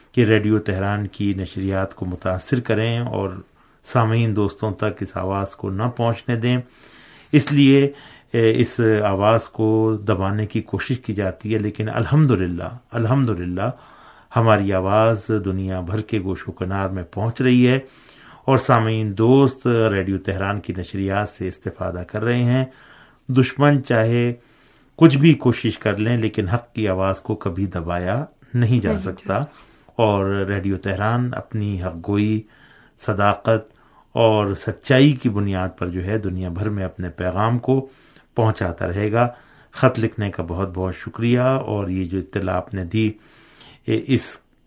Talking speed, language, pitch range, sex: 150 wpm, Urdu, 95-120 Hz, male